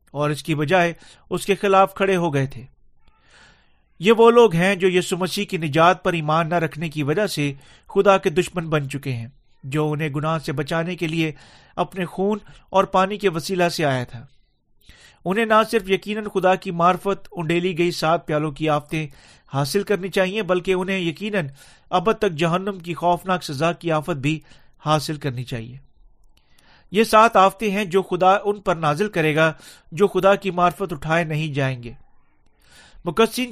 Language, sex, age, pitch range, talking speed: Urdu, male, 40-59, 155-195 Hz, 180 wpm